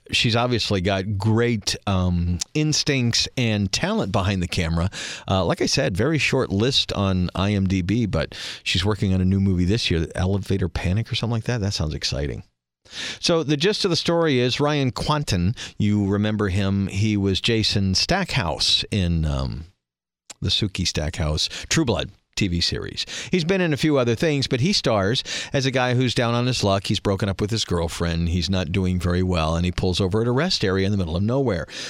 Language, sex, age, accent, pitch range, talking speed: English, male, 40-59, American, 95-130 Hz, 200 wpm